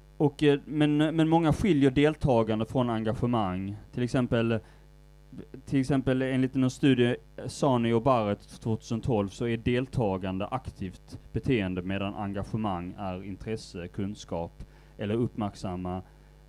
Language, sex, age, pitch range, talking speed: Swedish, male, 30-49, 105-140 Hz, 115 wpm